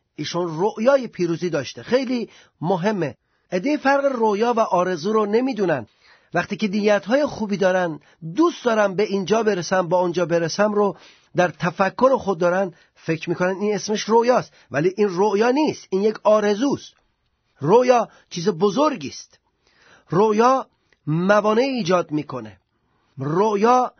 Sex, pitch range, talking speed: male, 185-235 Hz, 130 wpm